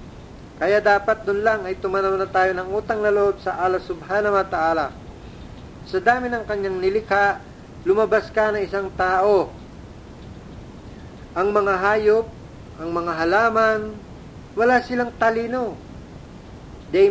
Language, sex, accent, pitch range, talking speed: Filipino, male, native, 185-220 Hz, 120 wpm